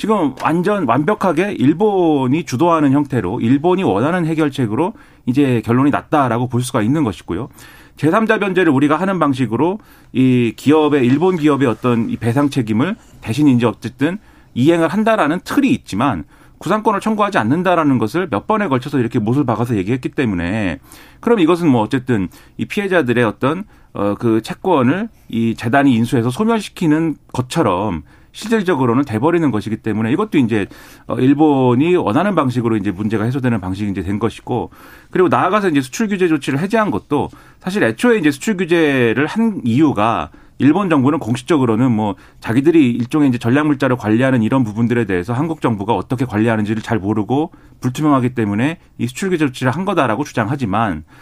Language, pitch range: Korean, 115-165 Hz